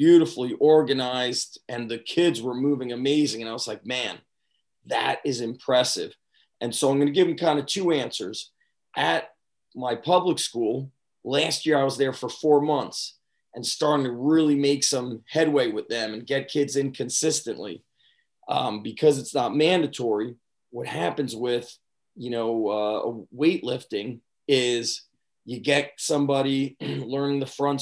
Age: 30-49